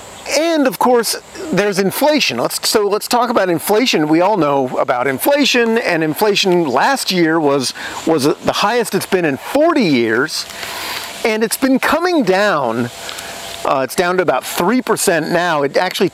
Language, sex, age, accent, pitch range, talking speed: English, male, 40-59, American, 145-220 Hz, 165 wpm